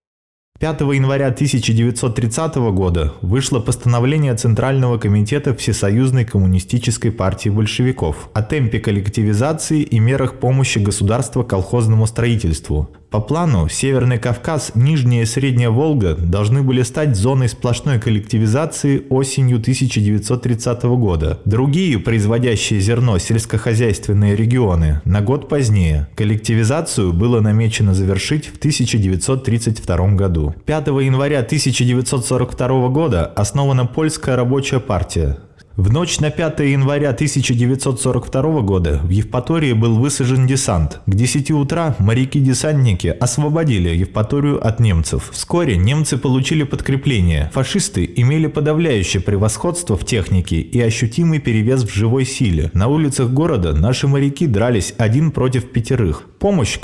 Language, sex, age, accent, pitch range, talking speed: Russian, male, 20-39, native, 105-135 Hz, 115 wpm